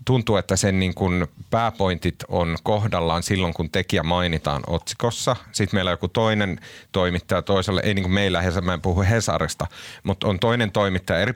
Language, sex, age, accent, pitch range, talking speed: Finnish, male, 30-49, native, 90-115 Hz, 165 wpm